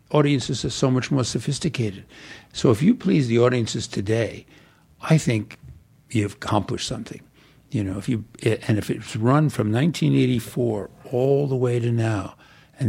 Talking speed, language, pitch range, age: 165 wpm, English, 110-145 Hz, 50-69